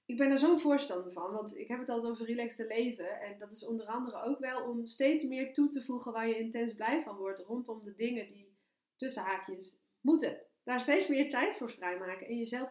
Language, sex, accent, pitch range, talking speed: Dutch, female, Dutch, 195-245 Hz, 225 wpm